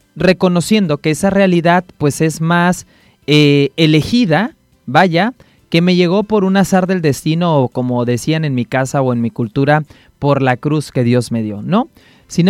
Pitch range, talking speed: 135-190 Hz, 180 wpm